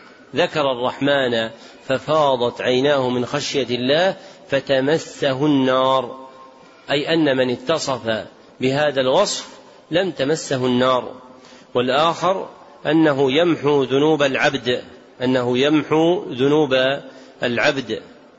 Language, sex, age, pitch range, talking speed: Arabic, male, 40-59, 125-150 Hz, 90 wpm